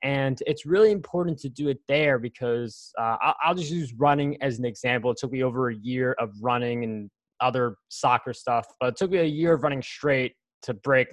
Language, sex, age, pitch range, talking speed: English, male, 20-39, 130-170 Hz, 215 wpm